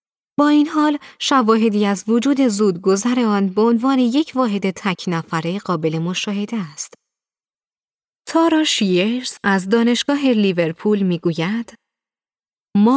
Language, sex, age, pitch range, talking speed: Persian, female, 30-49, 175-235 Hz, 115 wpm